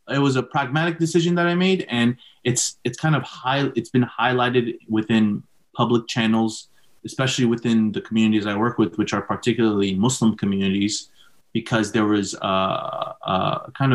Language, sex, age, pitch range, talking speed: English, male, 30-49, 105-125 Hz, 165 wpm